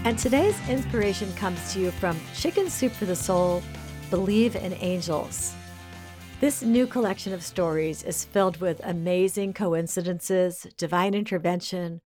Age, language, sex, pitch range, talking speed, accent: 50-69, English, female, 170-205 Hz, 135 wpm, American